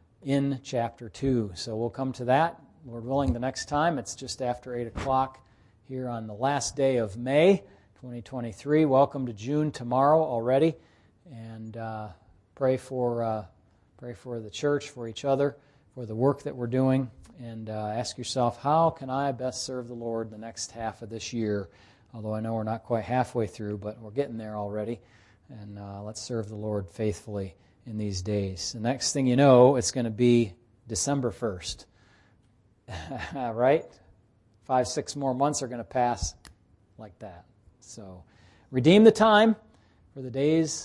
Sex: male